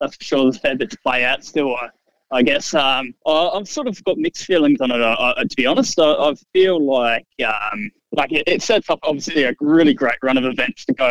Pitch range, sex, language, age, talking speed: 135-200 Hz, male, English, 20-39, 260 wpm